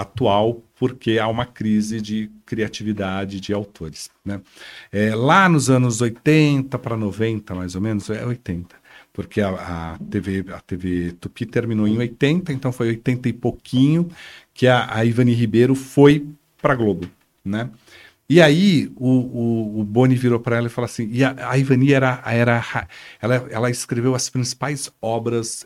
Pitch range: 100-130 Hz